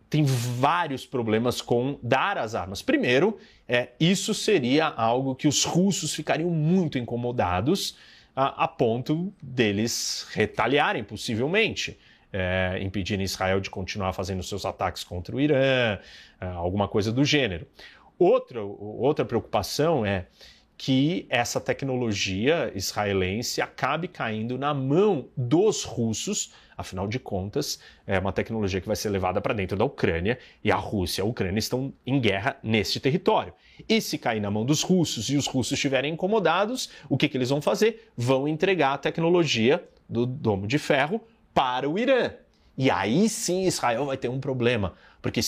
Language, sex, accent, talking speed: Portuguese, male, Brazilian, 150 wpm